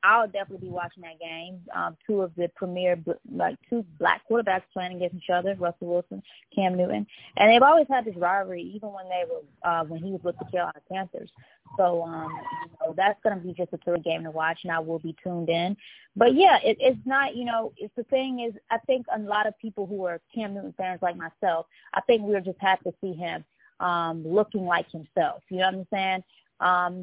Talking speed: 240 wpm